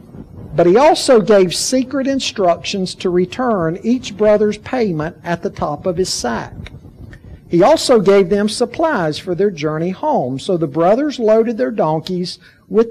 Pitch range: 165-230 Hz